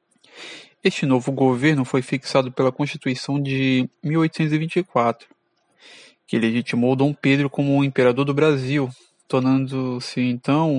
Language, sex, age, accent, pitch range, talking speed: Portuguese, male, 20-39, Brazilian, 125-155 Hz, 105 wpm